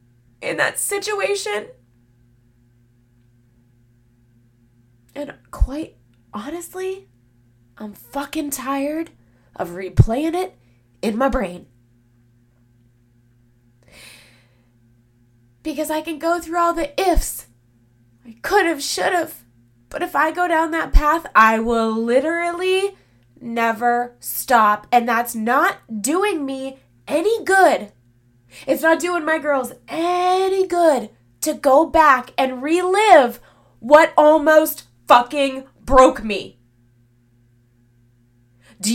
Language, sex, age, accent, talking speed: English, female, 20-39, American, 100 wpm